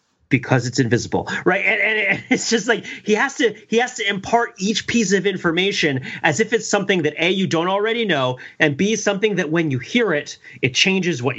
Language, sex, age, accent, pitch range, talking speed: English, male, 40-59, American, 140-205 Hz, 210 wpm